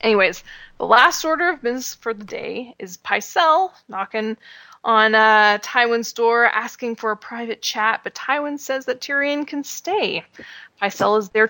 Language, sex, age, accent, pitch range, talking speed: English, female, 20-39, American, 200-255 Hz, 160 wpm